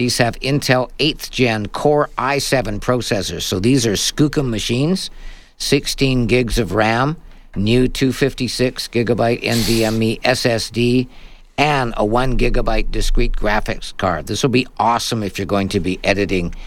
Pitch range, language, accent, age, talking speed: 100-125 Hz, English, American, 50-69, 140 wpm